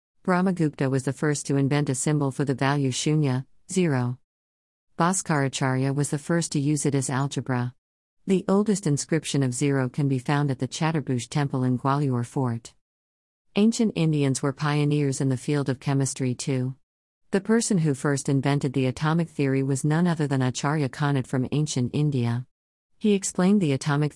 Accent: American